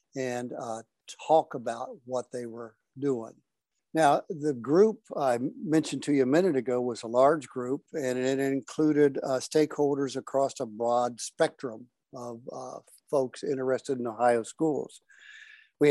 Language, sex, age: English, male, 60-79